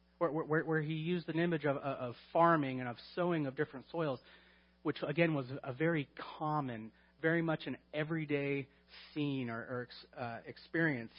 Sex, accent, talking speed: male, American, 165 wpm